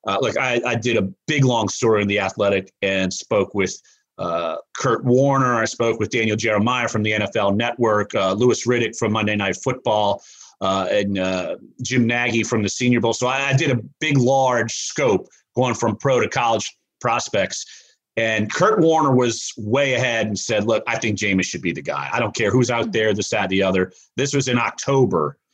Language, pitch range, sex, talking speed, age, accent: English, 105-130 Hz, male, 205 wpm, 40-59, American